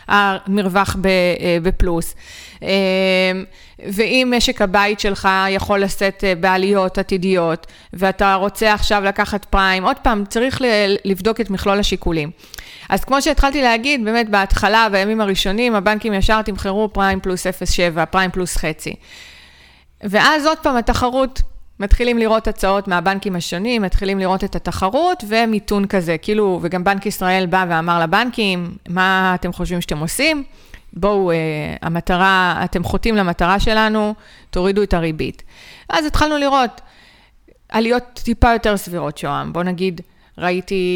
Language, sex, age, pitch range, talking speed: Hebrew, female, 30-49, 180-215 Hz, 125 wpm